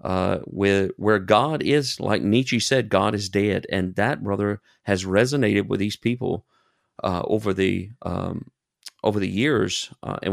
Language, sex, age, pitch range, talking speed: English, male, 40-59, 100-130 Hz, 165 wpm